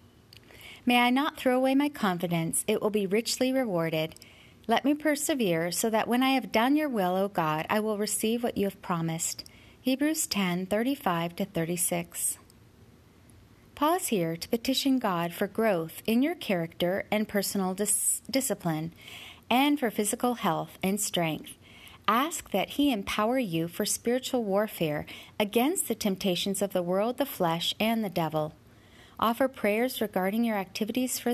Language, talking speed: English, 155 wpm